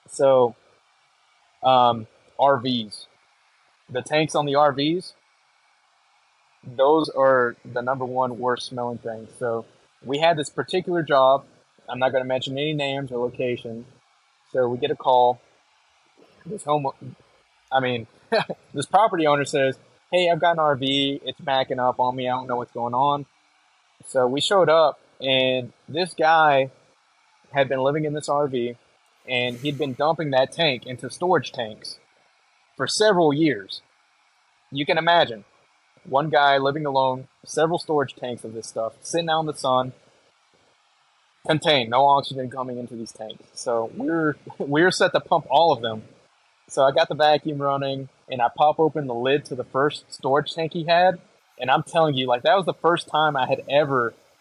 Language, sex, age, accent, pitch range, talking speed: English, male, 20-39, American, 125-155 Hz, 170 wpm